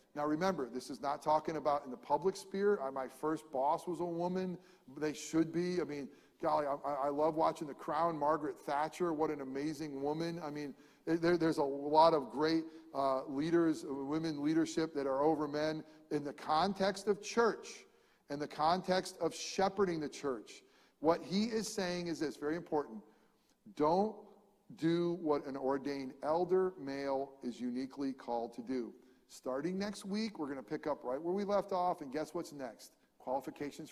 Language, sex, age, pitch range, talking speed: English, male, 40-59, 140-180 Hz, 180 wpm